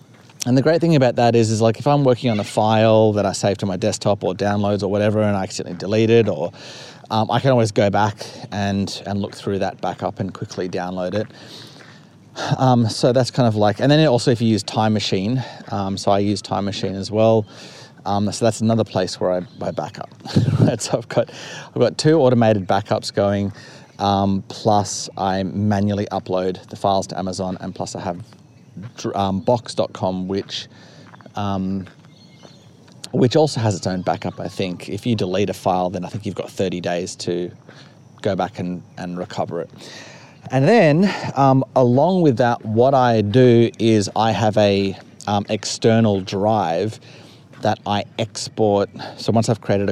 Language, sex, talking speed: English, male, 185 wpm